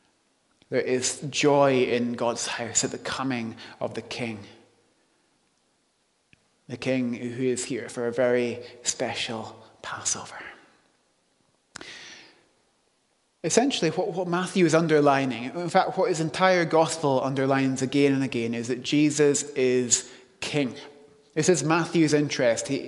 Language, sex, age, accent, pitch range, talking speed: English, male, 30-49, British, 125-155 Hz, 125 wpm